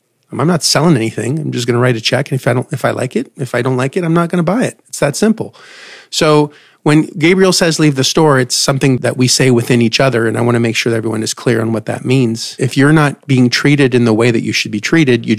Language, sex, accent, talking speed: English, male, American, 295 wpm